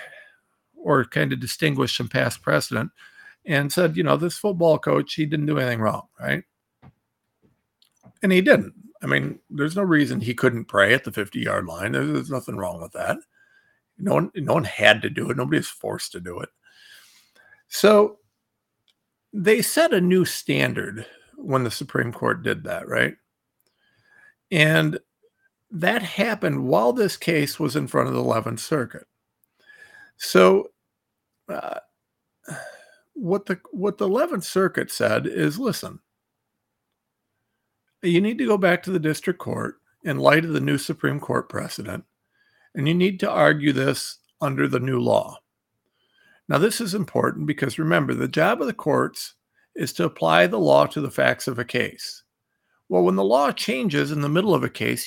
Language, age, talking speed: English, 50-69, 165 wpm